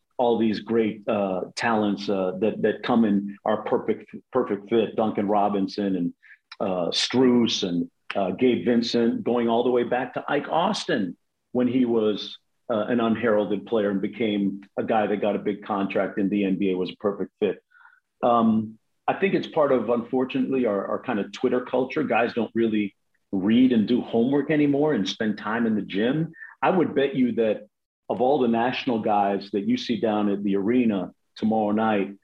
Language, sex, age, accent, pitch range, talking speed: English, male, 50-69, American, 105-140 Hz, 185 wpm